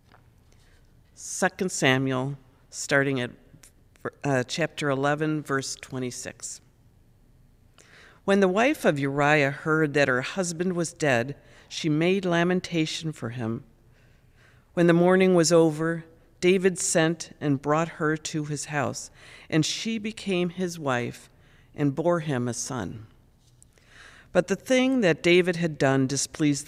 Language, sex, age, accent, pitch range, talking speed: English, female, 50-69, American, 130-170 Hz, 125 wpm